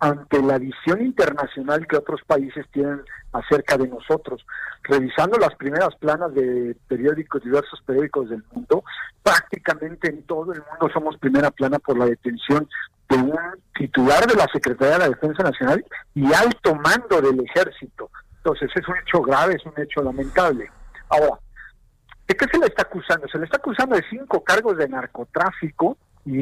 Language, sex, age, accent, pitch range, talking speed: Spanish, male, 50-69, Mexican, 140-180 Hz, 165 wpm